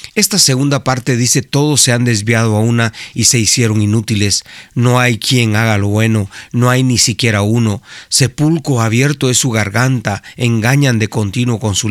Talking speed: 175 wpm